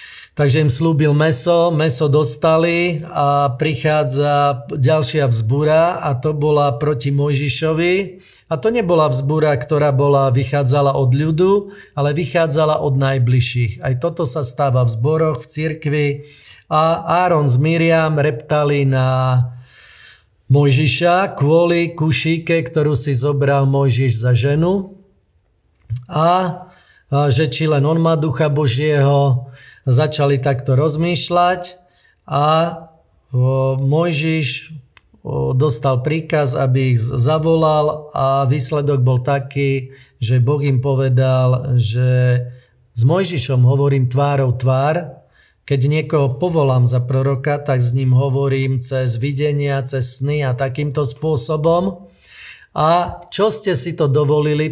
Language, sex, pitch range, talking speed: Slovak, male, 130-160 Hz, 115 wpm